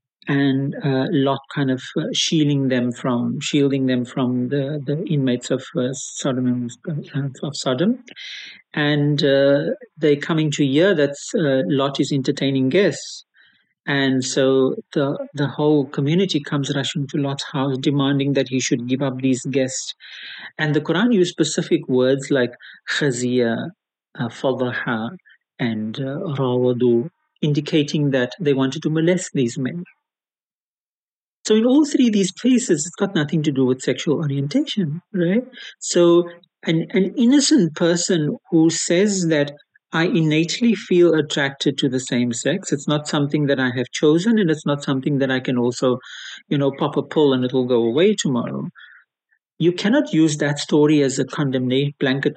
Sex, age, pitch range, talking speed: male, 50-69, 130-165 Hz, 160 wpm